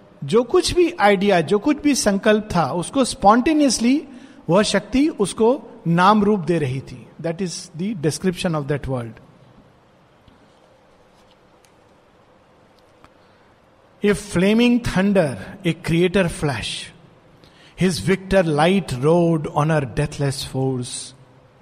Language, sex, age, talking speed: Hindi, male, 50-69, 110 wpm